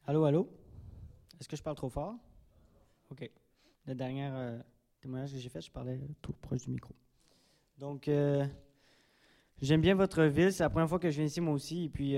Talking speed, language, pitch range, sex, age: 195 wpm, French, 125-150 Hz, male, 20-39